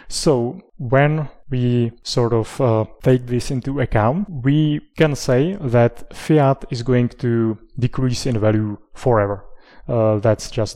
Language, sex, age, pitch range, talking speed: English, male, 30-49, 110-130 Hz, 140 wpm